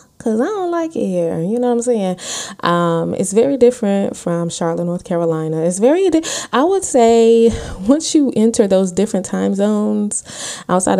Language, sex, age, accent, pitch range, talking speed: English, female, 20-39, American, 165-210 Hz, 180 wpm